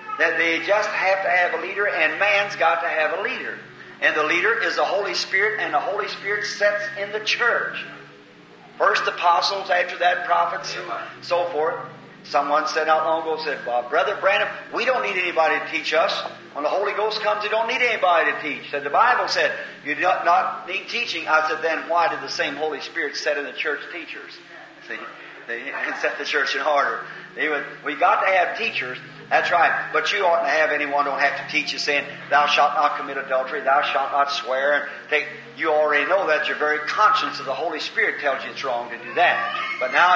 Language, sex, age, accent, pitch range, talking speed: English, male, 50-69, American, 145-190 Hz, 215 wpm